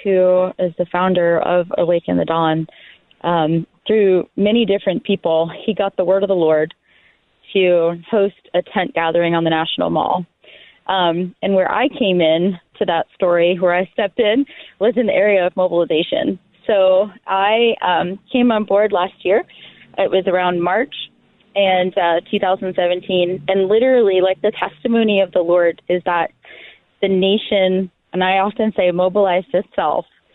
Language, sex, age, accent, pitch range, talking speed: English, female, 20-39, American, 180-225 Hz, 160 wpm